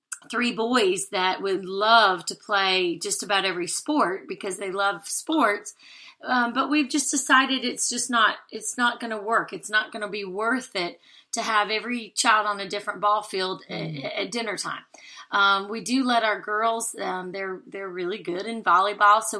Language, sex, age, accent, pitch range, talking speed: English, female, 30-49, American, 195-250 Hz, 190 wpm